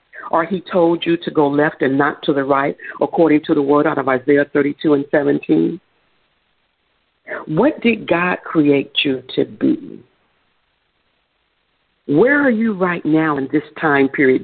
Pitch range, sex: 145-185 Hz, female